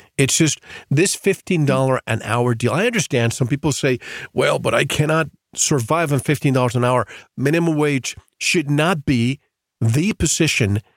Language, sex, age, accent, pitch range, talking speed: English, male, 50-69, American, 120-160 Hz, 155 wpm